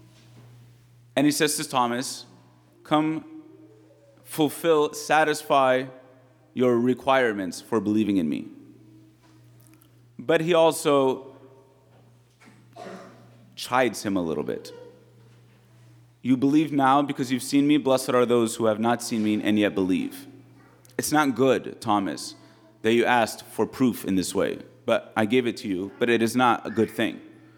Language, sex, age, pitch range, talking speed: English, male, 30-49, 115-150 Hz, 140 wpm